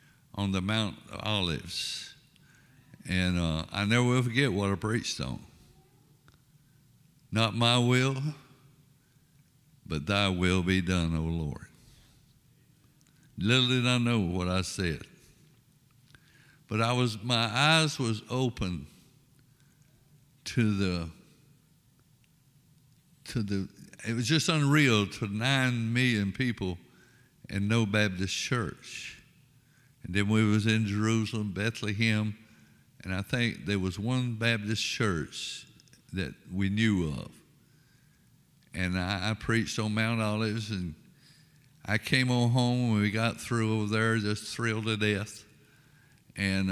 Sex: male